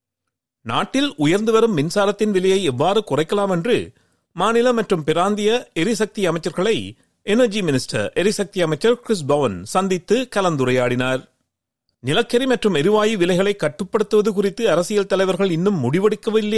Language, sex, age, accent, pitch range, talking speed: Tamil, male, 40-59, native, 155-220 Hz, 110 wpm